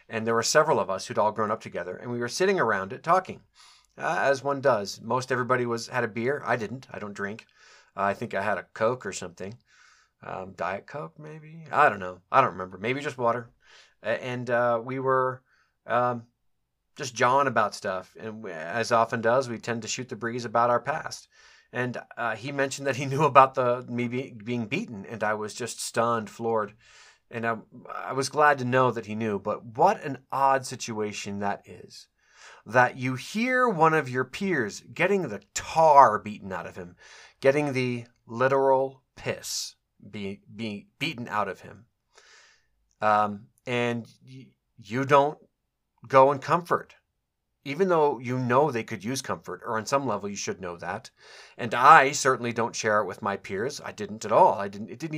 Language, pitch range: English, 110-135 Hz